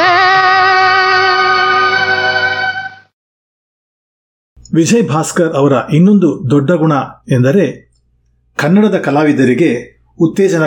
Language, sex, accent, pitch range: Kannada, male, native, 125-175 Hz